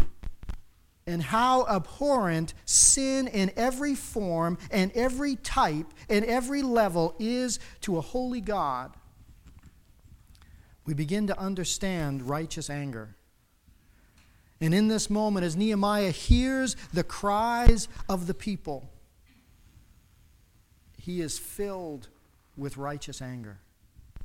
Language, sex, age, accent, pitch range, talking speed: English, male, 50-69, American, 135-205 Hz, 105 wpm